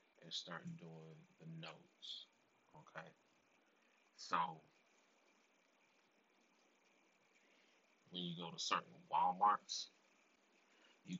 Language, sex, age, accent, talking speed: English, male, 30-49, American, 75 wpm